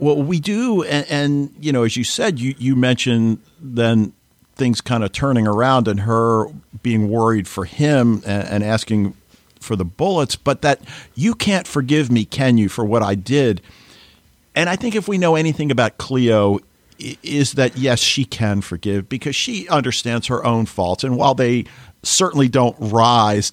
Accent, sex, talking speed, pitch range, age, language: American, male, 180 wpm, 110-145 Hz, 50-69, English